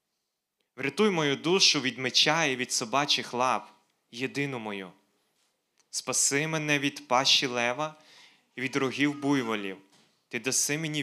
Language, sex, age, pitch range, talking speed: Ukrainian, male, 20-39, 115-140 Hz, 125 wpm